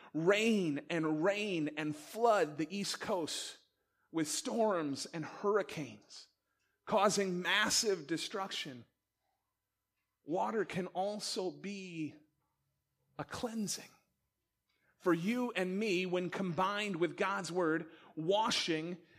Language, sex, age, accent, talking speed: English, male, 30-49, American, 95 wpm